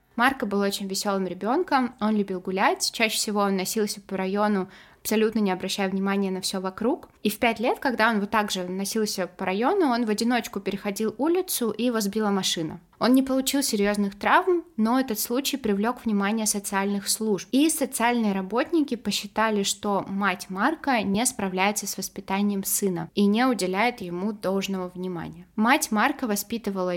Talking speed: 165 wpm